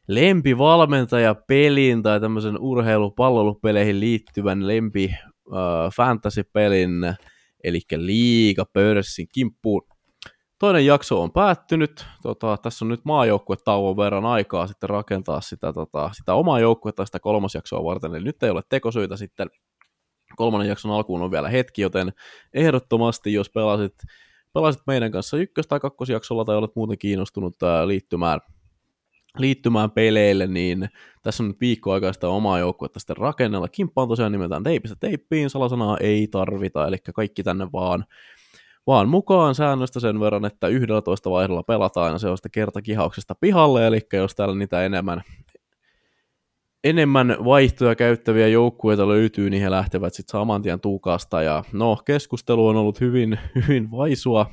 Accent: native